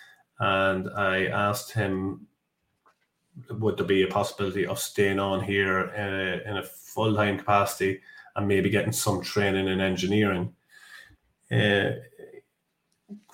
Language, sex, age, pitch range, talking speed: English, male, 30-49, 100-110 Hz, 120 wpm